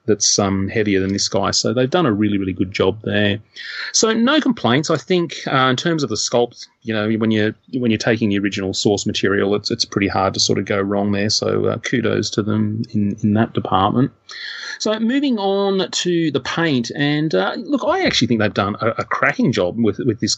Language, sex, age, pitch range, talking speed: English, male, 30-49, 100-120 Hz, 225 wpm